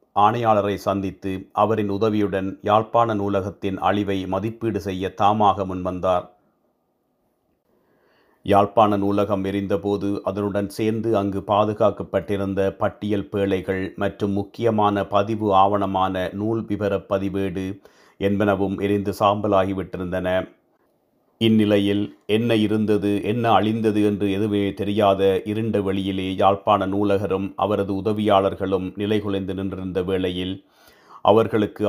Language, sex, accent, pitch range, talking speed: Tamil, male, native, 95-105 Hz, 90 wpm